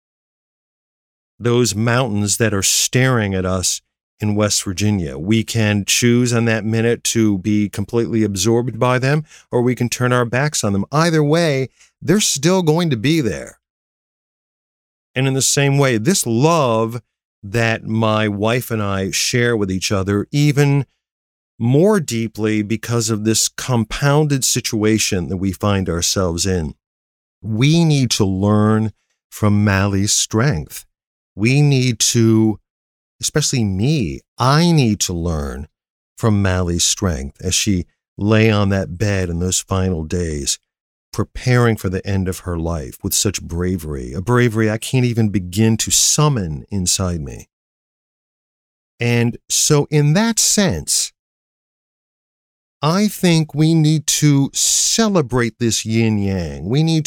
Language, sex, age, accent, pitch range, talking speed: English, male, 50-69, American, 95-130 Hz, 140 wpm